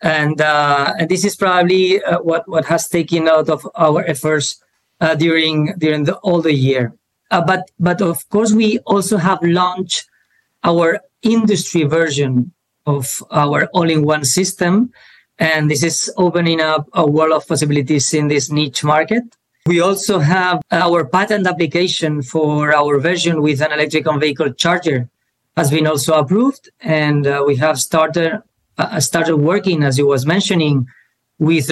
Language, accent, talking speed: English, Spanish, 155 wpm